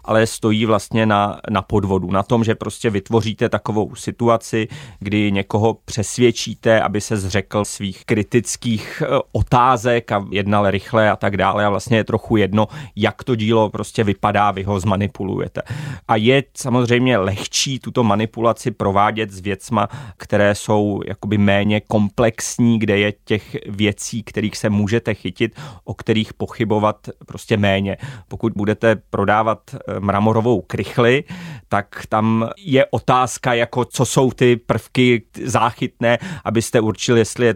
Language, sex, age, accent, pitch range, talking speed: Czech, male, 30-49, native, 105-120 Hz, 140 wpm